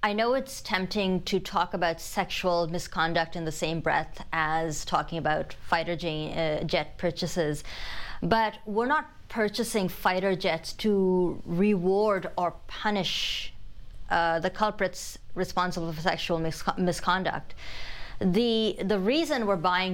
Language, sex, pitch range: English, female, 170-205 Hz